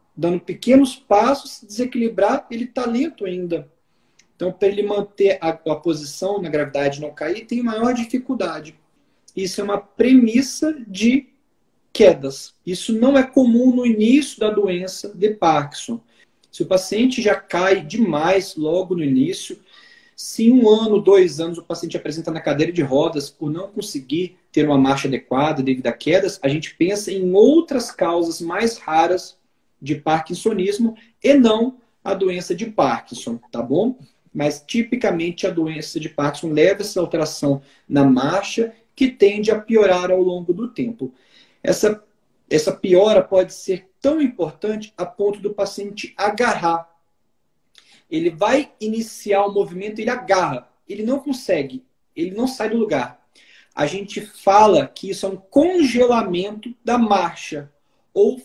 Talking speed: 150 wpm